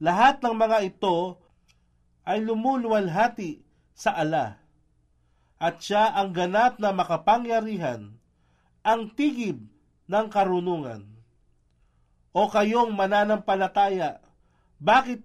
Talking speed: 85 wpm